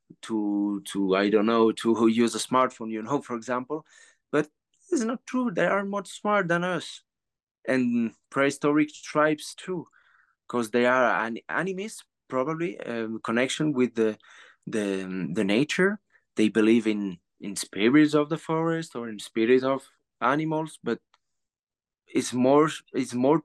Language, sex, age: English, male, 30-49